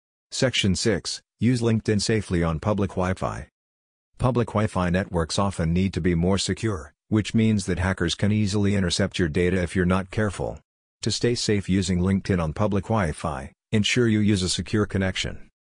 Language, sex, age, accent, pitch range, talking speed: English, male, 50-69, American, 90-105 Hz, 170 wpm